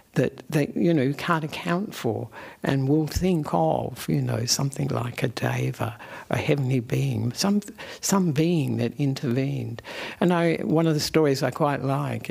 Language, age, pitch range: English, 60-79, 130-160 Hz